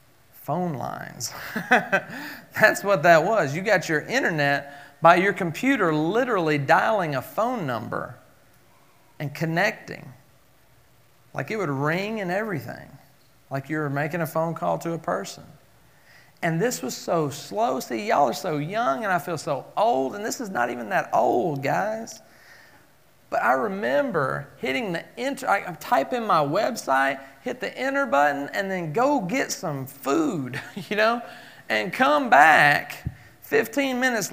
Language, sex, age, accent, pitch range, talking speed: English, male, 40-59, American, 150-240 Hz, 150 wpm